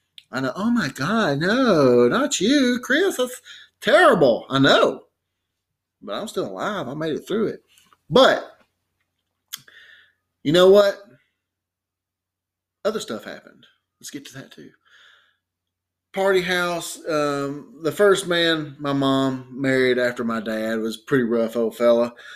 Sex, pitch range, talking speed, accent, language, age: male, 110-145 Hz, 140 wpm, American, English, 30-49